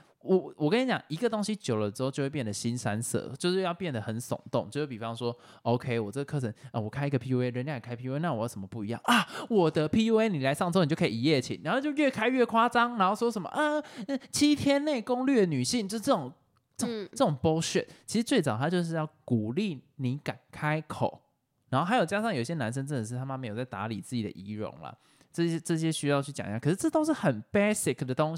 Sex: male